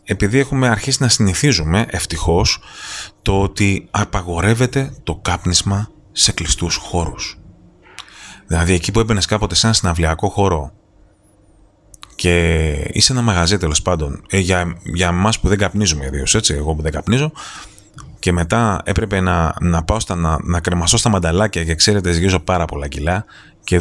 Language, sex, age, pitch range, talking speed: Greek, male, 30-49, 85-110 Hz, 150 wpm